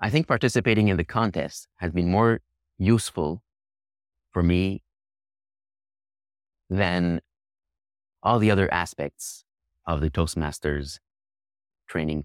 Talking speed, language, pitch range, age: 105 wpm, English, 80-100 Hz, 30-49